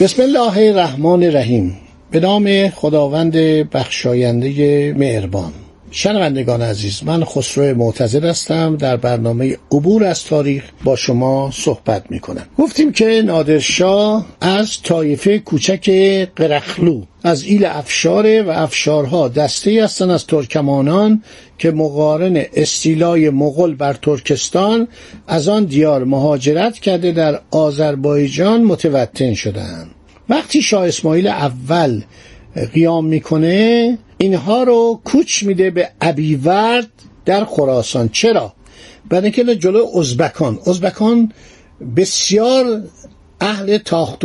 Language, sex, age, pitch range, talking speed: Persian, male, 60-79, 145-200 Hz, 105 wpm